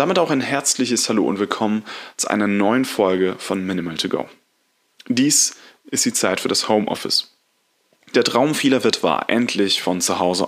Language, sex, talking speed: German, male, 180 wpm